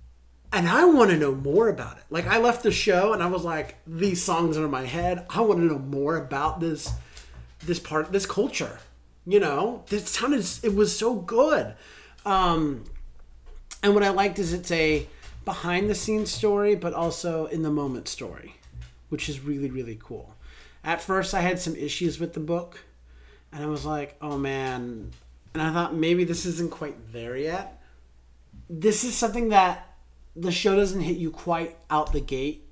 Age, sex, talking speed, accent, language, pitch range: 30-49, male, 185 wpm, American, English, 115-170 Hz